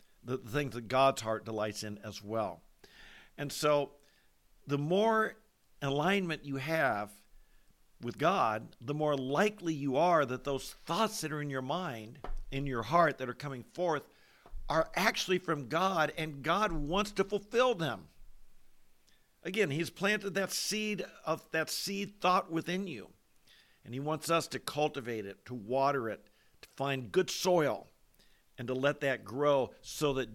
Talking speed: 160 wpm